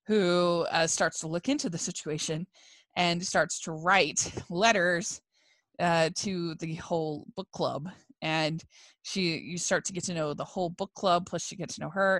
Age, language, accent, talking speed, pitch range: 20-39, English, American, 180 wpm, 165-215 Hz